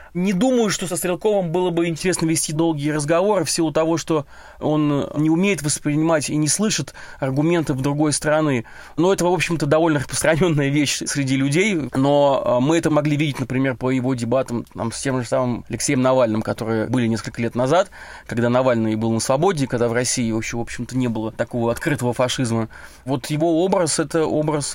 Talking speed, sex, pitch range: 185 wpm, male, 130-155 Hz